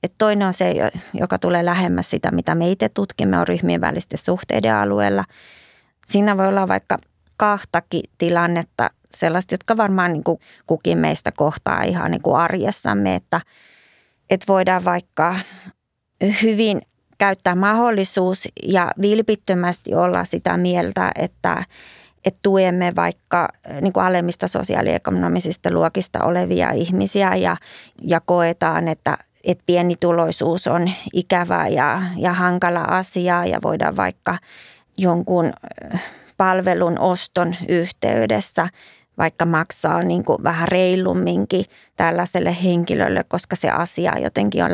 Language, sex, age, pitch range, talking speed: Finnish, female, 20-39, 155-185 Hz, 115 wpm